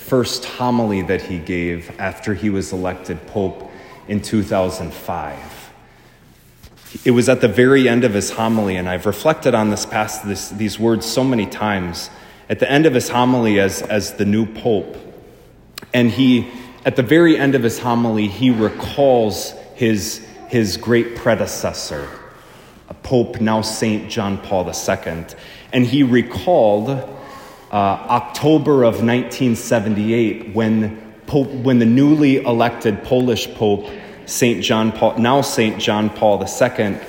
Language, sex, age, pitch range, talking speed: English, male, 30-49, 100-125 Hz, 145 wpm